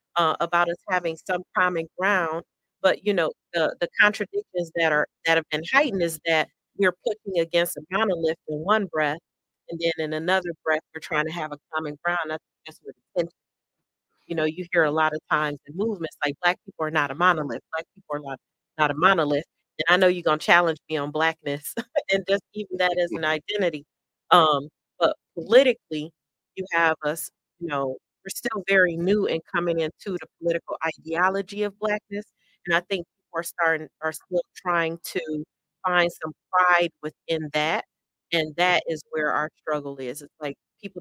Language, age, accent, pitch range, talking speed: English, 40-59, American, 155-180 Hz, 190 wpm